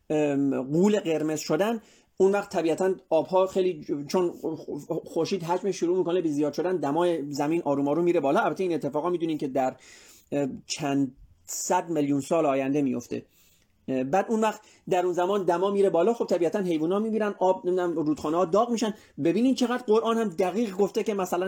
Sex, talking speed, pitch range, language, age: male, 170 wpm, 150-200 Hz, Persian, 30-49